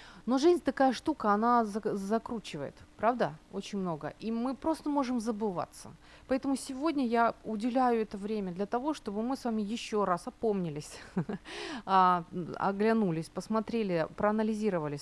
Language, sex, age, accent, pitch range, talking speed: Ukrainian, female, 30-49, native, 175-235 Hz, 130 wpm